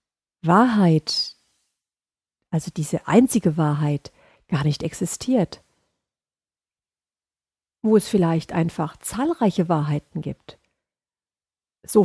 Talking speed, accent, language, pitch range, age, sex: 80 wpm, German, German, 165-210 Hz, 50-69, female